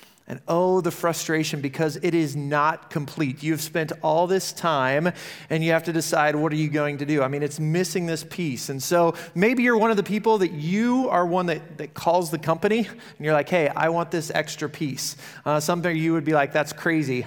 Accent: American